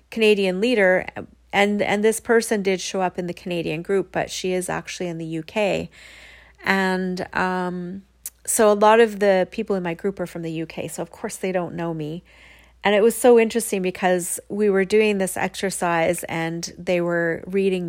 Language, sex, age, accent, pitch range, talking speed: English, female, 30-49, American, 175-220 Hz, 190 wpm